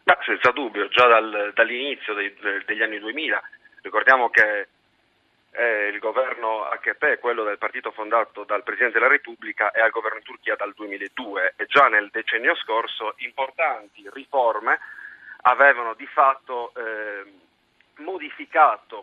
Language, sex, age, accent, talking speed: Italian, male, 40-59, native, 120 wpm